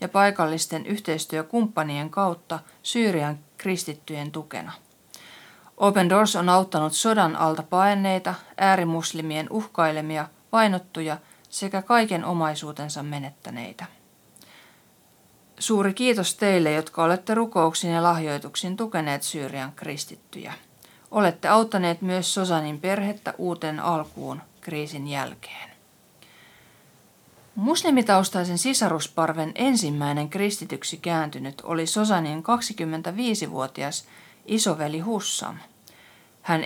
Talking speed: 85 wpm